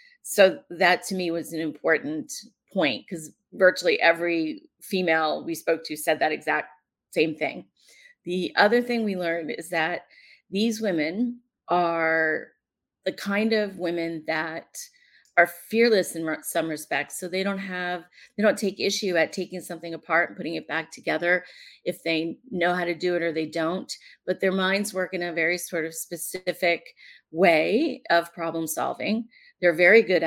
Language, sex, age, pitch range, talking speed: English, female, 30-49, 165-200 Hz, 165 wpm